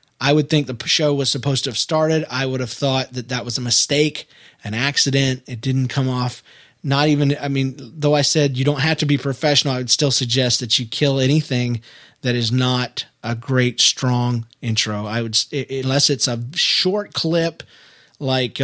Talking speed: 195 wpm